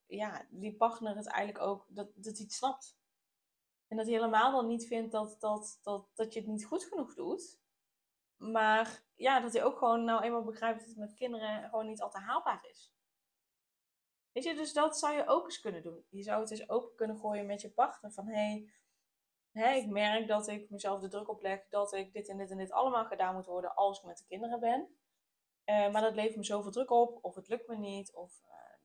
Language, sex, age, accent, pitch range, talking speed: Dutch, female, 20-39, Dutch, 200-235 Hz, 220 wpm